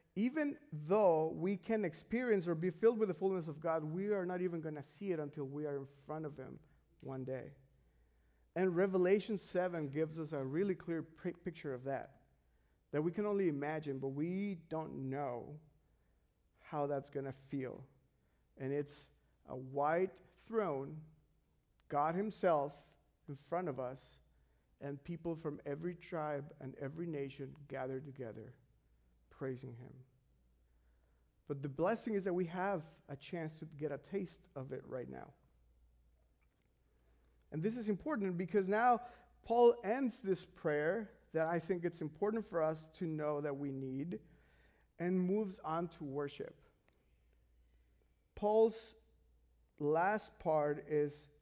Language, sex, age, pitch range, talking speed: English, male, 50-69, 135-185 Hz, 145 wpm